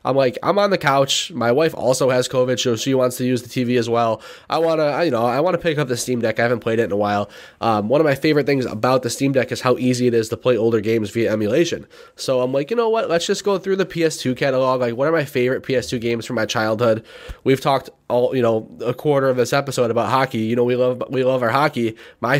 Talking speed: 275 wpm